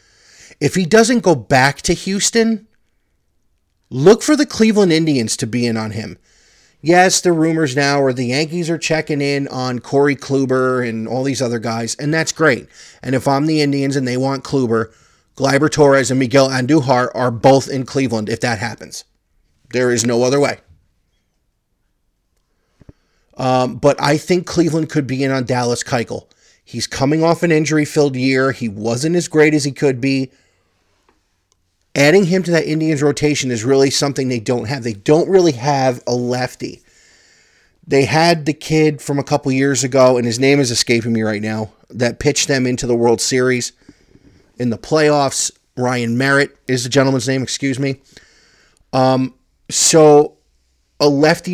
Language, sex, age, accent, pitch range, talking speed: English, male, 30-49, American, 120-150 Hz, 170 wpm